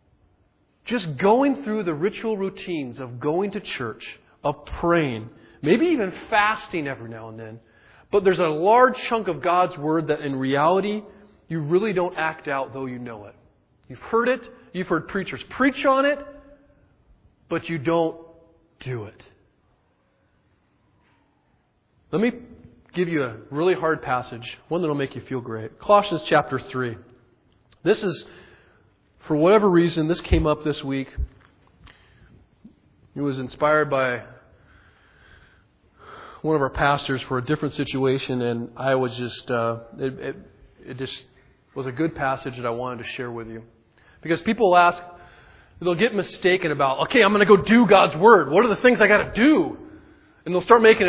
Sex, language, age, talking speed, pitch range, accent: male, English, 40-59, 165 wpm, 125-190 Hz, American